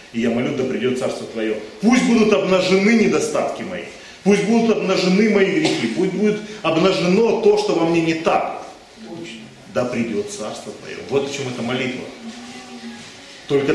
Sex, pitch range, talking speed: male, 125-200 Hz, 160 wpm